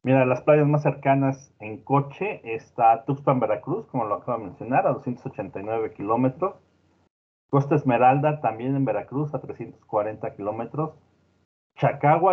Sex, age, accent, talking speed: male, 40-59, Mexican, 130 wpm